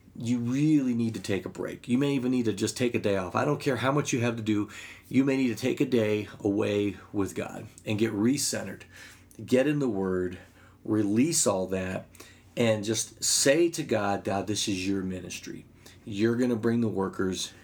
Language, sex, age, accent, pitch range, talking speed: English, male, 40-59, American, 105-130 Hz, 210 wpm